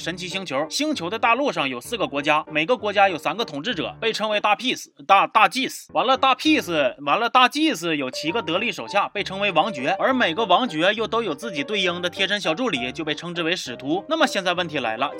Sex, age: male, 30-49